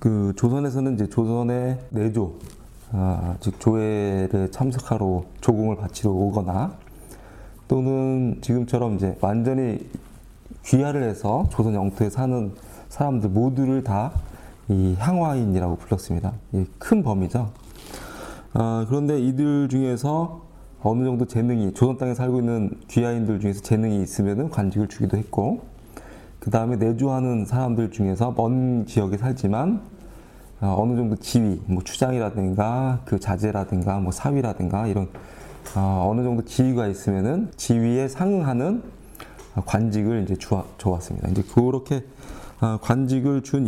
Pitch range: 100-130 Hz